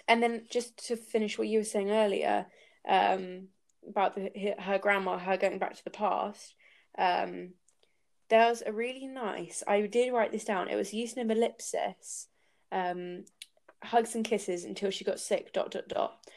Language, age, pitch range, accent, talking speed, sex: English, 20-39, 190-225 Hz, British, 185 wpm, female